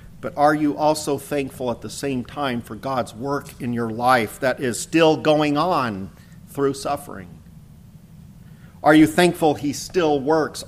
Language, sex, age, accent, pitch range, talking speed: English, male, 50-69, American, 125-155 Hz, 155 wpm